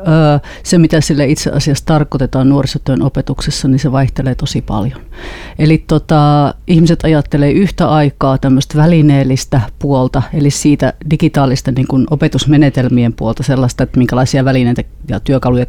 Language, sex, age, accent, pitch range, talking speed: Finnish, female, 30-49, native, 130-150 Hz, 130 wpm